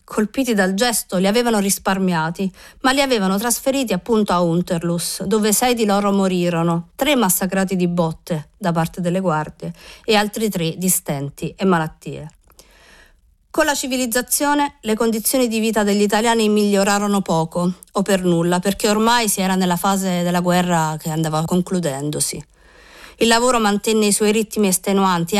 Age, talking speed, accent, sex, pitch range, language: 50-69, 155 wpm, native, female, 180-225 Hz, Italian